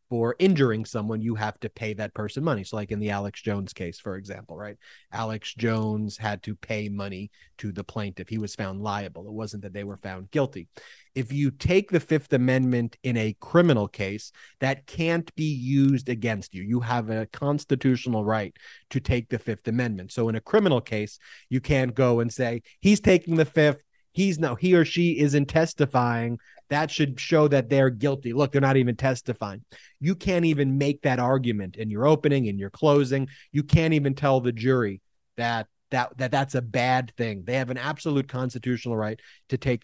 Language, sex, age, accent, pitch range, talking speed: English, male, 30-49, American, 110-140 Hz, 195 wpm